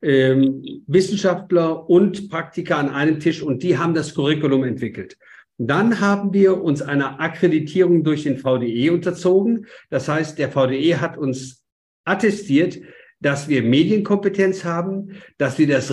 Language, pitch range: German, 135-190 Hz